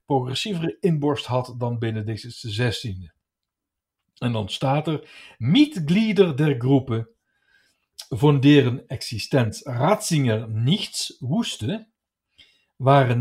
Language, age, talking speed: Dutch, 60-79, 90 wpm